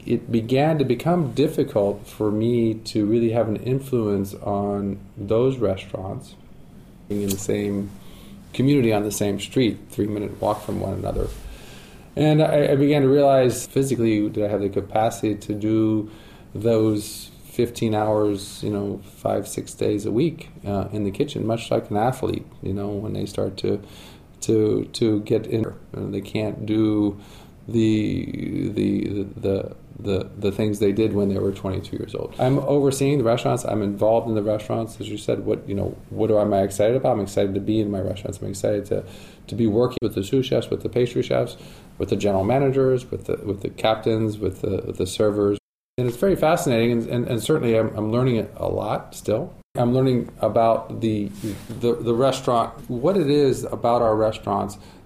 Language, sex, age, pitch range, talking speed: English, male, 40-59, 100-120 Hz, 190 wpm